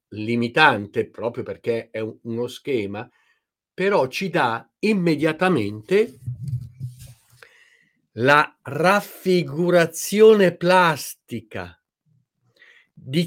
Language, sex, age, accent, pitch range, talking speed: Italian, male, 50-69, native, 120-185 Hz, 65 wpm